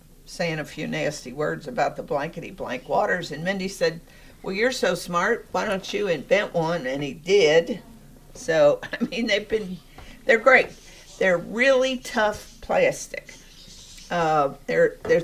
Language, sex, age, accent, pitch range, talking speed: English, female, 50-69, American, 175-240 Hz, 145 wpm